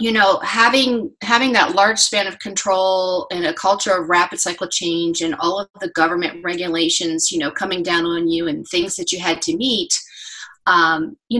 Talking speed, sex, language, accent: 195 wpm, female, English, American